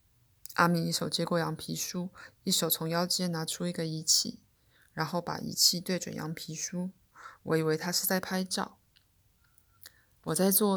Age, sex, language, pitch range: 20-39, female, Chinese, 160-200 Hz